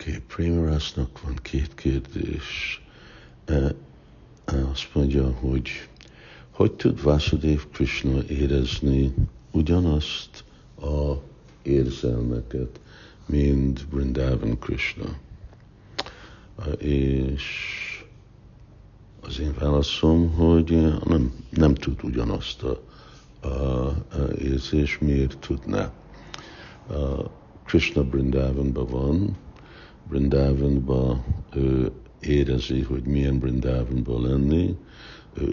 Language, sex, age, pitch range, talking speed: Hungarian, male, 60-79, 65-80 Hz, 80 wpm